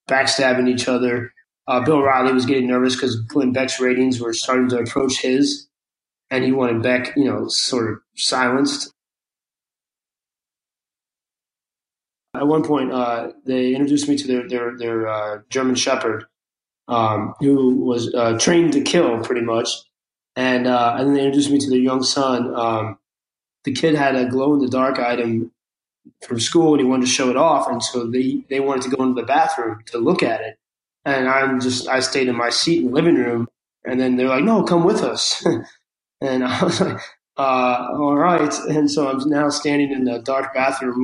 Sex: male